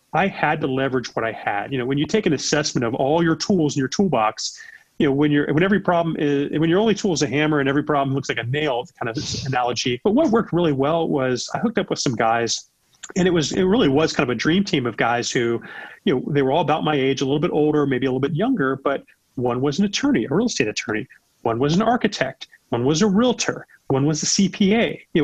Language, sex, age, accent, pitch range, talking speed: English, male, 30-49, American, 135-190 Hz, 265 wpm